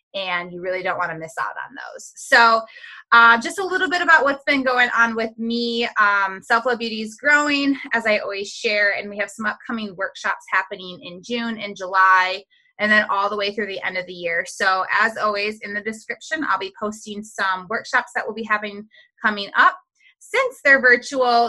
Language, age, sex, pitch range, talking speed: English, 20-39, female, 200-255 Hz, 205 wpm